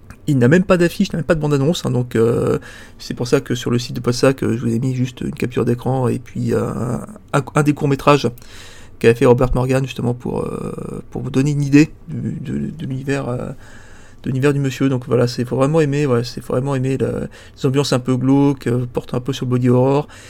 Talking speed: 250 wpm